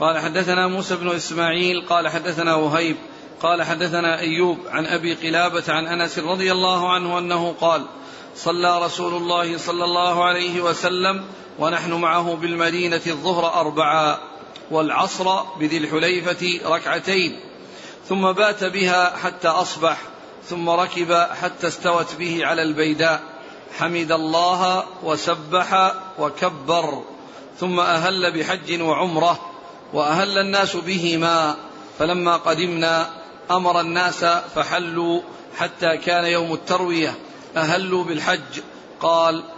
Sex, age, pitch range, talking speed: male, 40-59, 165-180 Hz, 110 wpm